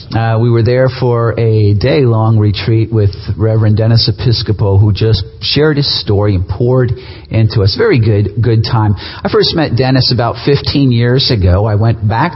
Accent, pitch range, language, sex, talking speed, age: American, 110-140 Hz, English, male, 175 wpm, 40-59